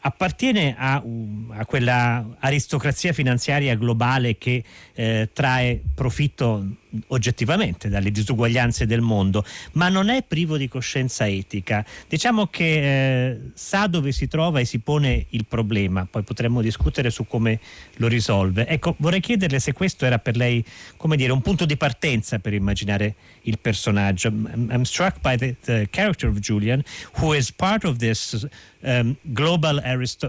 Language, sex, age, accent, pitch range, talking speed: Italian, male, 40-59, native, 110-140 Hz, 150 wpm